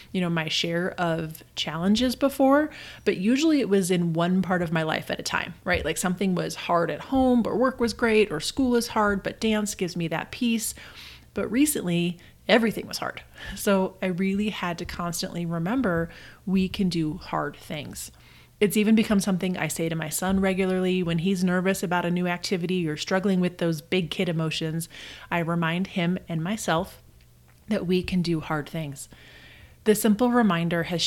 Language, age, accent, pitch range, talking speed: English, 30-49, American, 170-205 Hz, 185 wpm